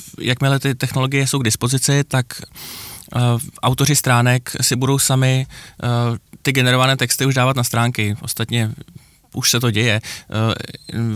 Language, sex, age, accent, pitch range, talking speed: Czech, male, 20-39, native, 115-130 Hz, 145 wpm